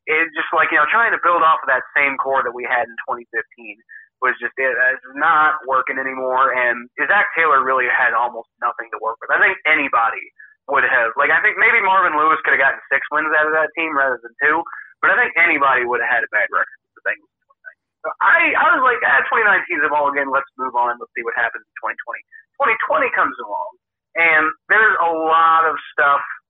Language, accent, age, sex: English, American, 30-49, male